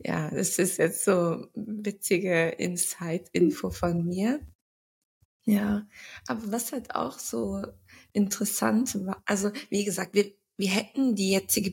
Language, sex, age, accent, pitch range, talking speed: German, female, 20-39, German, 175-210 Hz, 130 wpm